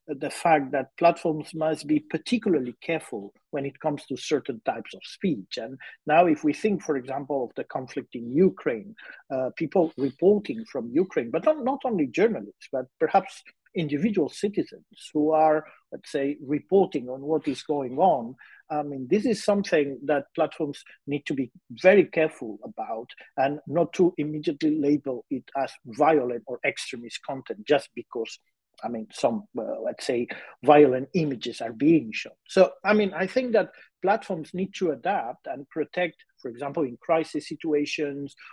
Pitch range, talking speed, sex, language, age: 140-175 Hz, 165 wpm, male, English, 50-69